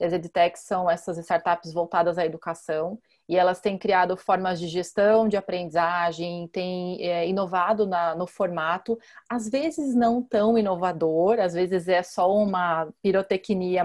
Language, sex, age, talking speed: Portuguese, female, 30-49, 140 wpm